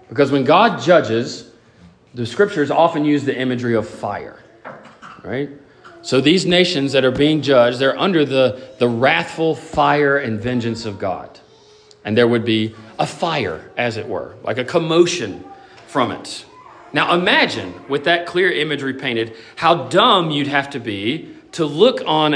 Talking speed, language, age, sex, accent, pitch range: 160 wpm, English, 40-59, male, American, 120-170 Hz